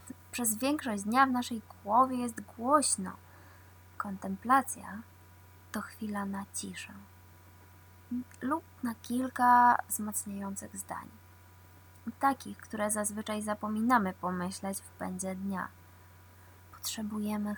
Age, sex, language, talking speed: 20-39, female, Polish, 90 wpm